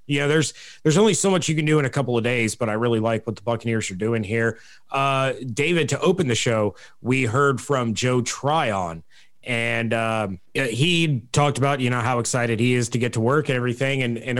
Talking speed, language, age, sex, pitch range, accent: 235 wpm, English, 30-49, male, 115-140 Hz, American